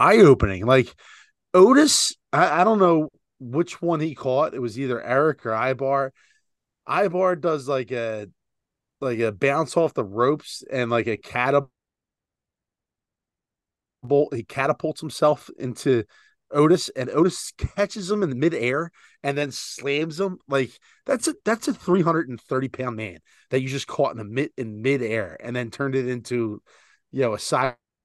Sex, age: male, 30-49